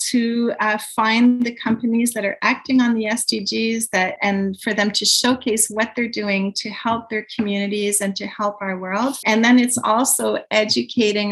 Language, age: German, 40-59